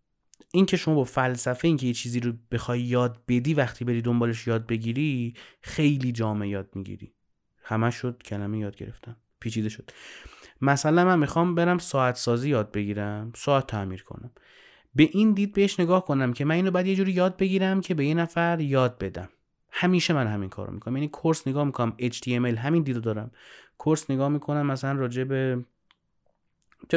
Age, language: 30-49, Persian